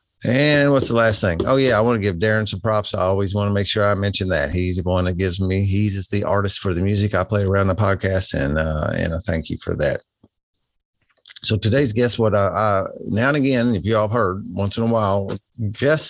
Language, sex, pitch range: English, male, 90-110 Hz